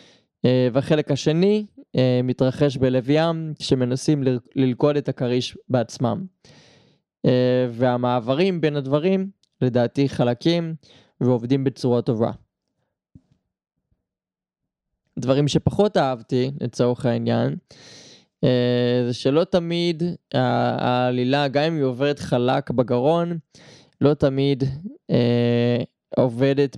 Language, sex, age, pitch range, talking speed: Hebrew, male, 20-39, 125-155 Hz, 75 wpm